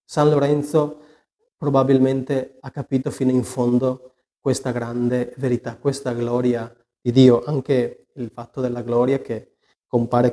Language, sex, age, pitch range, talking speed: Italian, male, 30-49, 120-140 Hz, 130 wpm